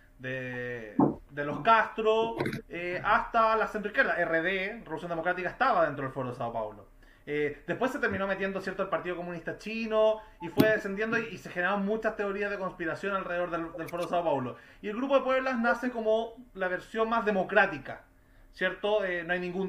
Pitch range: 175-220 Hz